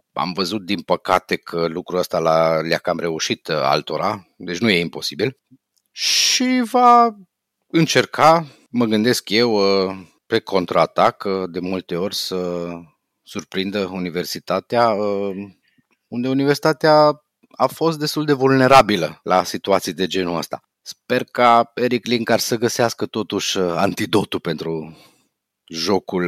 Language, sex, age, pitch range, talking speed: Romanian, male, 30-49, 90-125 Hz, 120 wpm